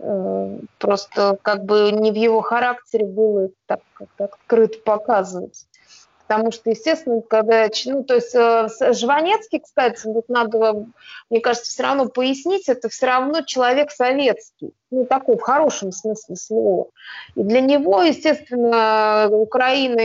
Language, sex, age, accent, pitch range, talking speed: Russian, female, 20-39, native, 215-255 Hz, 125 wpm